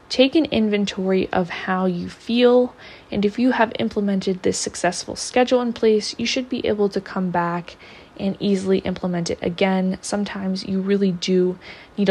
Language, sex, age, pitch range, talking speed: English, female, 20-39, 180-210 Hz, 170 wpm